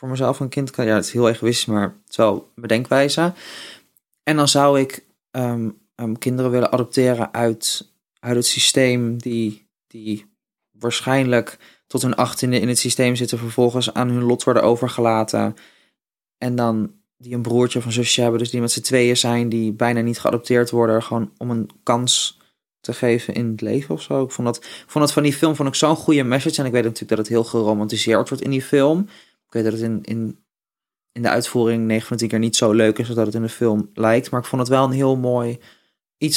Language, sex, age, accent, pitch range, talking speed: Dutch, male, 20-39, Dutch, 115-125 Hz, 215 wpm